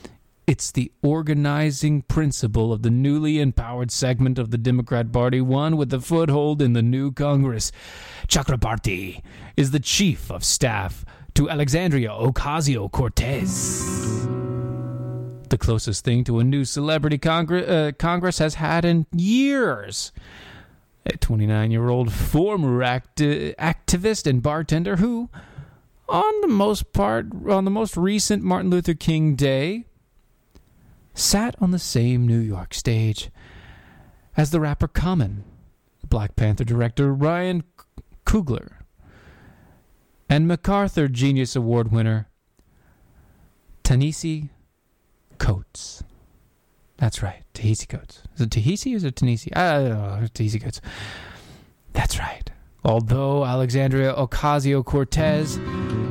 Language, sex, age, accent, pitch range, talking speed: English, male, 30-49, American, 115-160 Hz, 115 wpm